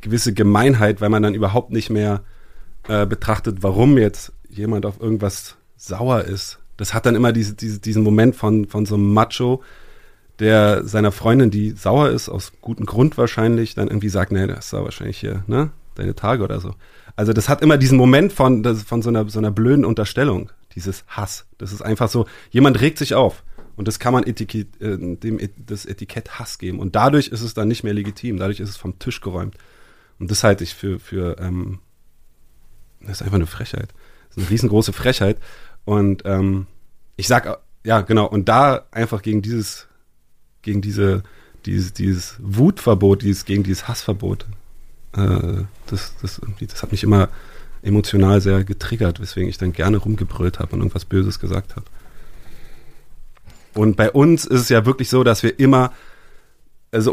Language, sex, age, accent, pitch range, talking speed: German, male, 30-49, German, 100-115 Hz, 180 wpm